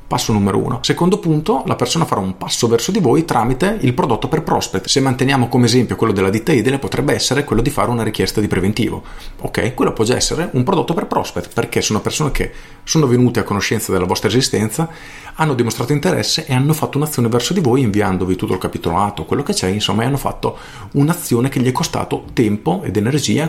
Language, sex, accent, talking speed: Italian, male, native, 215 wpm